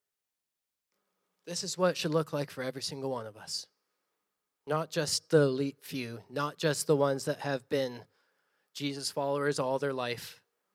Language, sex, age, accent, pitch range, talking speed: English, male, 20-39, American, 130-165 Hz, 165 wpm